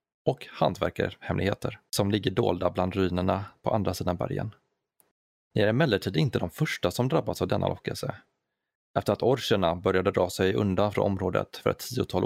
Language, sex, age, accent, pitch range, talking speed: Swedish, male, 30-49, native, 95-115 Hz, 165 wpm